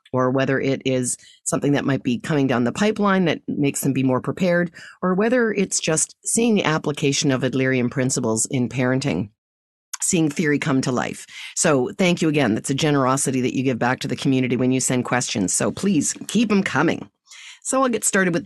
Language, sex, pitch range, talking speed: English, female, 135-175 Hz, 205 wpm